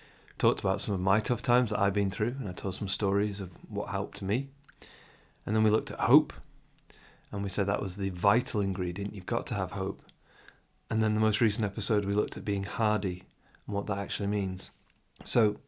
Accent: British